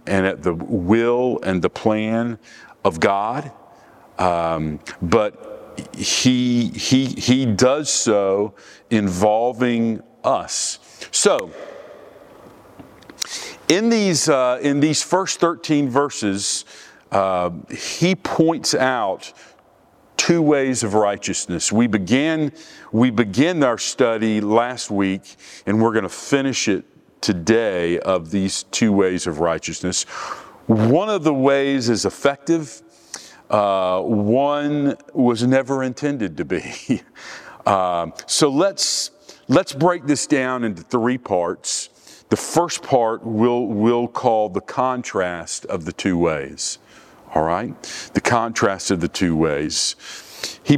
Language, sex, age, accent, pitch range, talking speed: English, male, 50-69, American, 100-140 Hz, 115 wpm